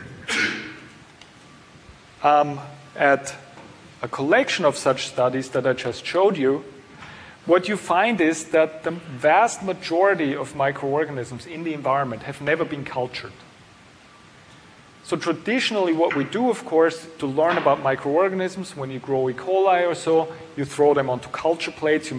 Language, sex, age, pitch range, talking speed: English, male, 40-59, 135-175 Hz, 145 wpm